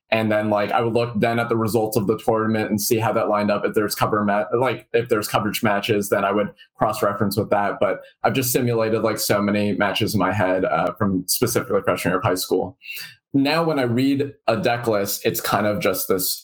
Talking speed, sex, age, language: 235 wpm, male, 20-39, English